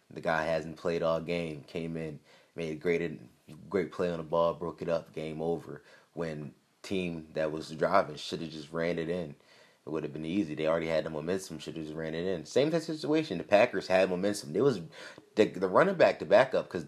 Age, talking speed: 20-39, 230 wpm